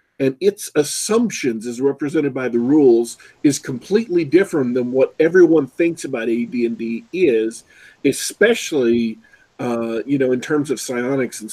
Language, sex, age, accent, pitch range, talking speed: English, male, 50-69, American, 125-170 Hz, 140 wpm